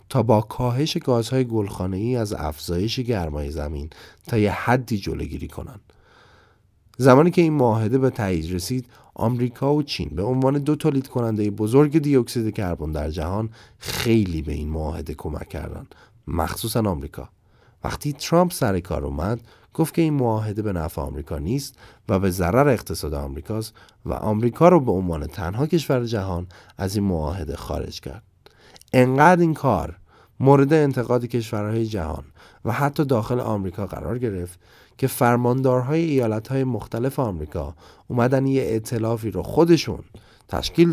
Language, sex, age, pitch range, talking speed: Persian, male, 30-49, 90-125 Hz, 145 wpm